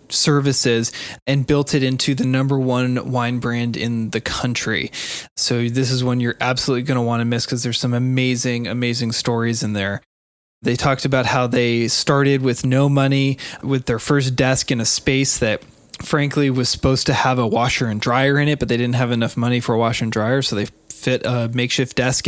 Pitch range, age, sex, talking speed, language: 120-135 Hz, 20-39, male, 205 wpm, English